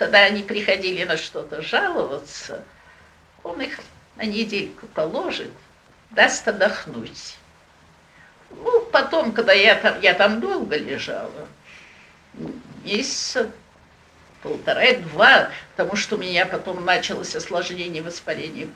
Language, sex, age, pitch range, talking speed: Russian, female, 60-79, 200-270 Hz, 105 wpm